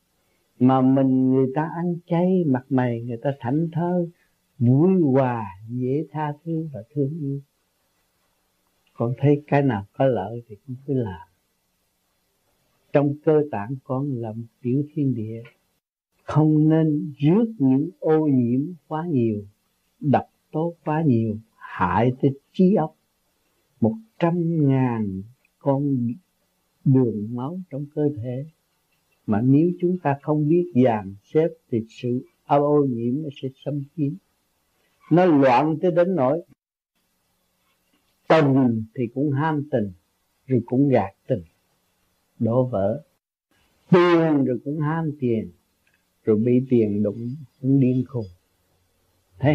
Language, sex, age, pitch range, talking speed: Vietnamese, male, 60-79, 115-150 Hz, 135 wpm